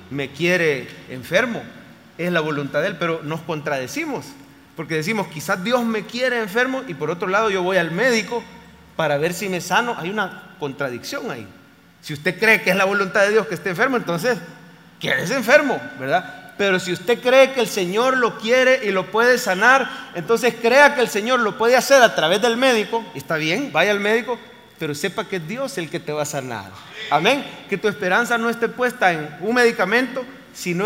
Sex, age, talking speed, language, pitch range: male, 40-59, 200 wpm, English, 170-240 Hz